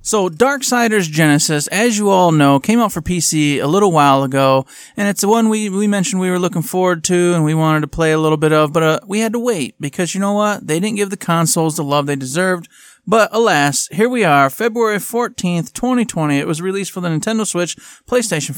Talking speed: 230 wpm